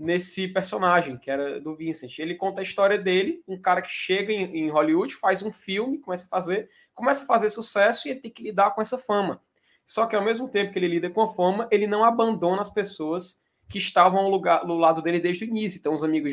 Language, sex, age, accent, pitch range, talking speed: Portuguese, male, 20-39, Brazilian, 160-205 Hz, 235 wpm